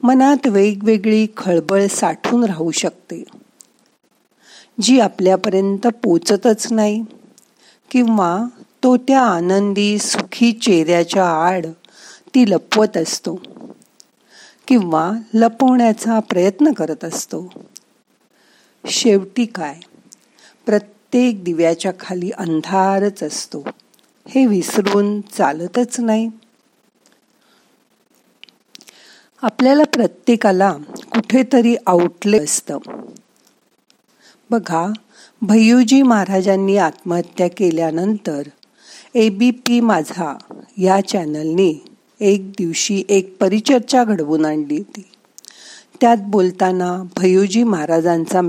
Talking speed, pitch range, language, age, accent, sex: 75 wpm, 180-235 Hz, Marathi, 50-69, native, female